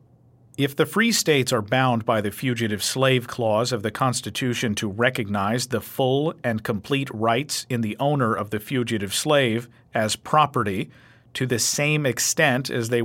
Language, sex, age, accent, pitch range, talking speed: English, male, 50-69, American, 120-140 Hz, 165 wpm